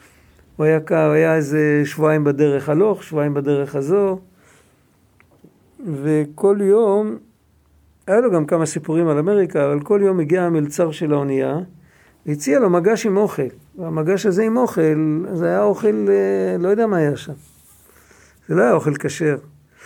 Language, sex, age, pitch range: Hebrew, male, 50-69, 150-200 Hz